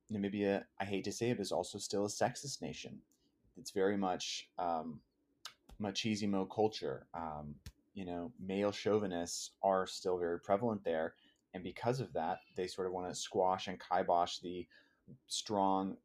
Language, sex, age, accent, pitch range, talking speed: English, male, 30-49, American, 90-105 Hz, 155 wpm